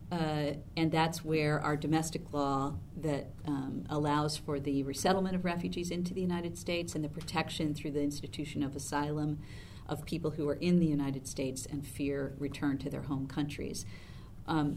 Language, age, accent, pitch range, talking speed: English, 50-69, American, 140-160 Hz, 175 wpm